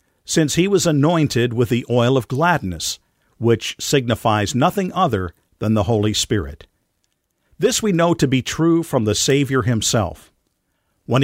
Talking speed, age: 150 wpm, 50-69